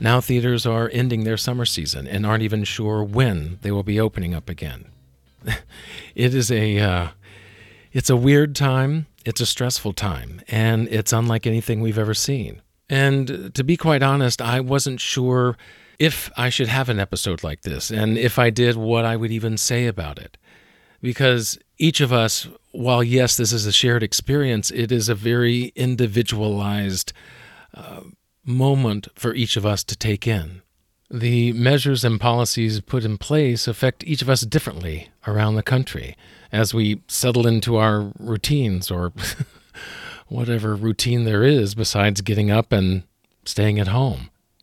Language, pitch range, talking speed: English, 105-125 Hz, 165 wpm